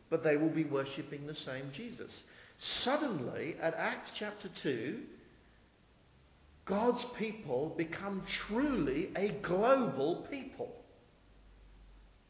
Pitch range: 120-170 Hz